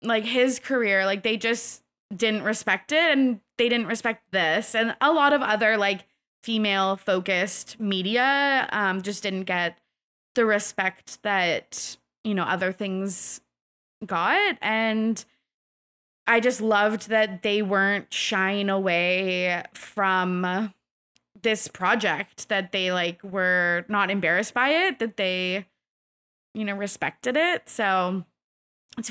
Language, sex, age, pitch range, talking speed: English, female, 20-39, 190-230 Hz, 130 wpm